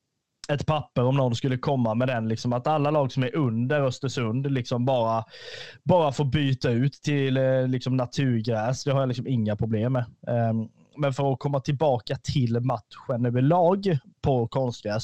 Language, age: Swedish, 20-39